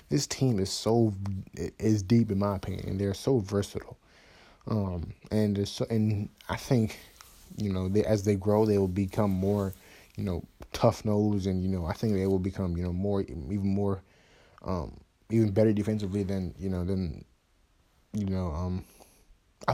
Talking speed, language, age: 175 wpm, English, 20-39